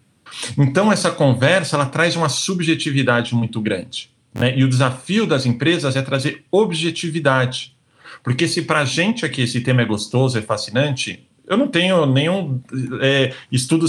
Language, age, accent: Portuguese, 40-59, Brazilian